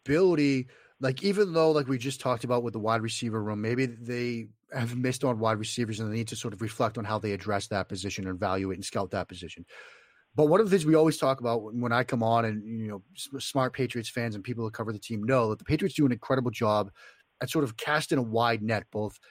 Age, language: 30-49, English